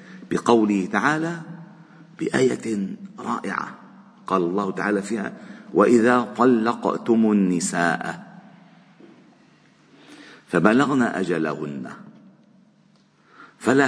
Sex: male